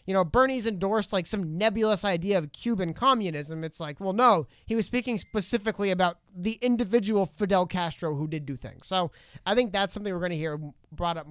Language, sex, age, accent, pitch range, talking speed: English, male, 30-49, American, 170-235 Hz, 205 wpm